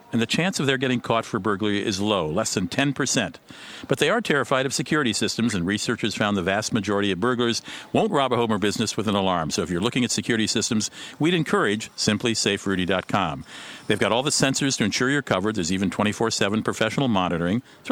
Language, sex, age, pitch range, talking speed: English, male, 50-69, 100-135 Hz, 215 wpm